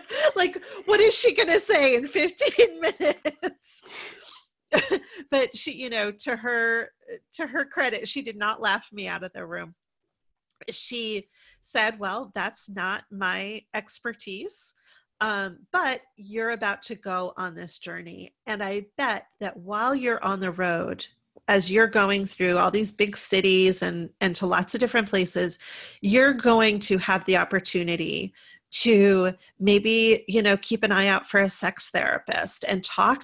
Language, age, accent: English, 30-49, American